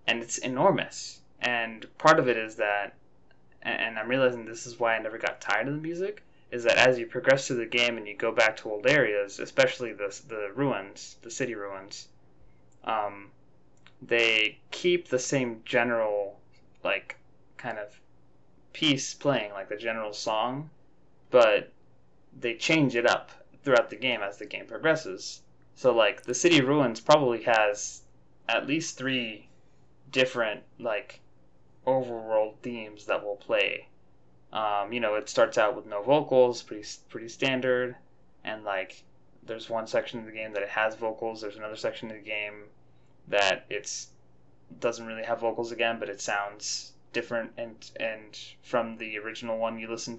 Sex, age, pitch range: male, 20-39, 105-125 Hz